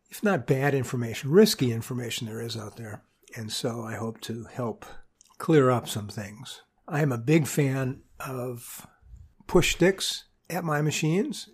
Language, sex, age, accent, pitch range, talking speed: English, male, 50-69, American, 115-150 Hz, 160 wpm